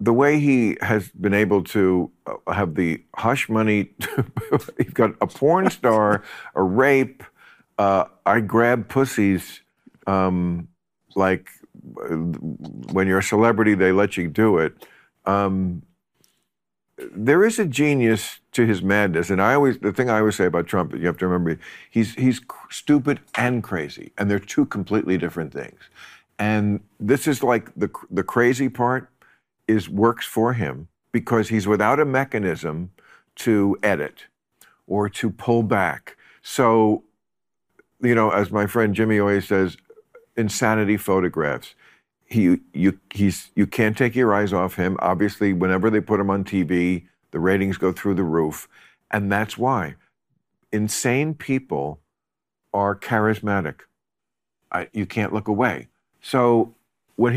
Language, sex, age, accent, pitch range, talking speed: English, male, 50-69, American, 95-115 Hz, 145 wpm